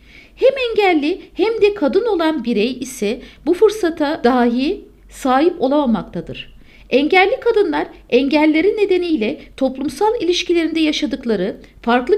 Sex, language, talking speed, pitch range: female, Turkish, 105 wpm, 255-385 Hz